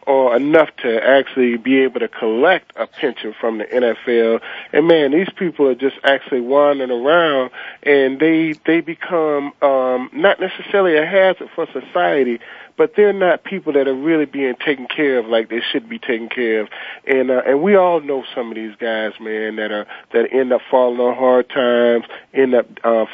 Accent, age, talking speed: American, 40-59, 190 wpm